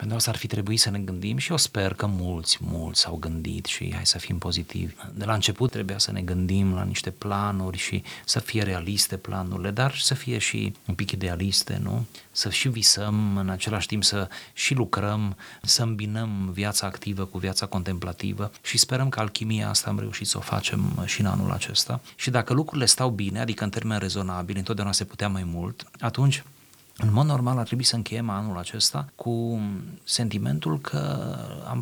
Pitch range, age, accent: 95-120 Hz, 30-49, native